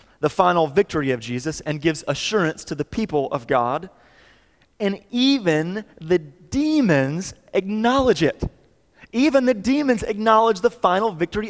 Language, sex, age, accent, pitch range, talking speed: English, male, 30-49, American, 125-180 Hz, 135 wpm